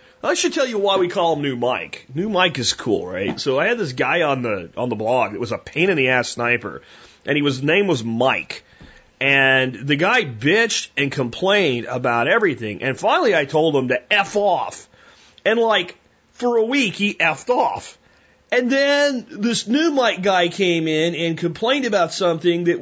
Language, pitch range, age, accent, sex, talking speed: English, 130-205 Hz, 30-49, American, male, 190 wpm